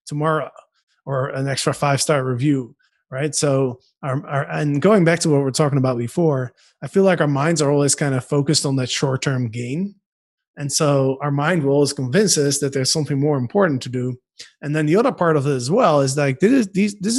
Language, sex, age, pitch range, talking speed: English, male, 20-39, 135-165 Hz, 235 wpm